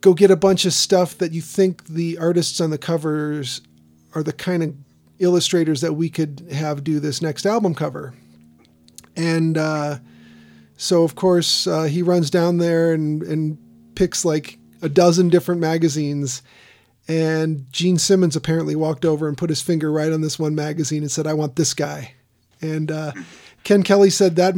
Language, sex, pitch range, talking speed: English, male, 150-175 Hz, 180 wpm